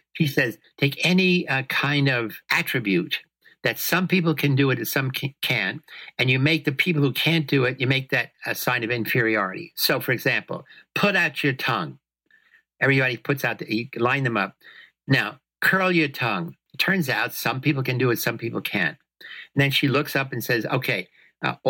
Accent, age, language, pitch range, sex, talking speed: American, 60-79, English, 125-155 Hz, male, 200 wpm